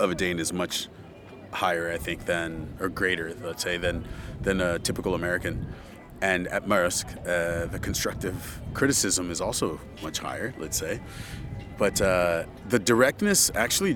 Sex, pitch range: male, 90-105 Hz